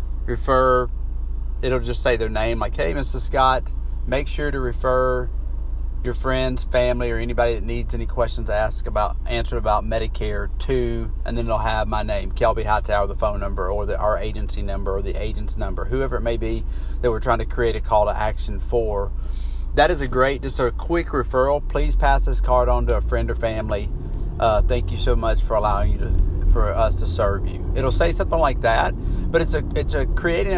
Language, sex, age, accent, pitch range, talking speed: English, male, 30-49, American, 90-130 Hz, 210 wpm